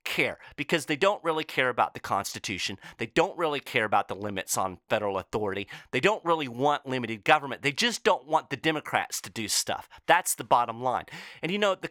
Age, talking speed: 40-59, 210 wpm